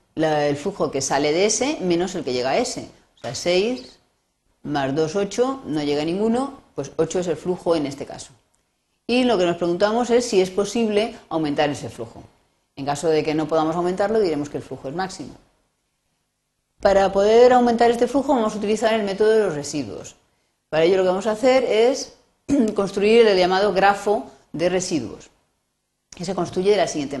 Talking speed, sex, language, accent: 195 wpm, female, Spanish, Spanish